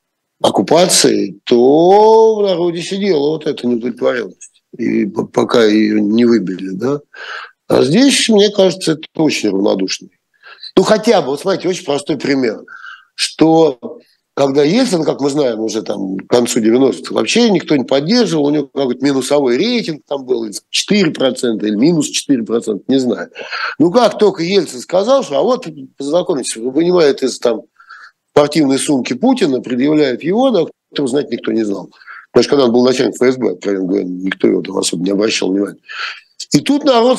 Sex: male